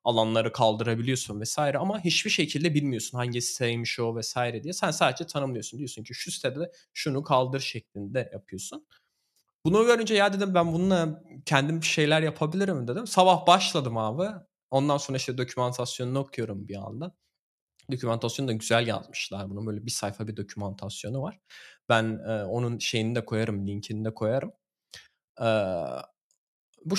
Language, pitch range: Turkish, 115-150 Hz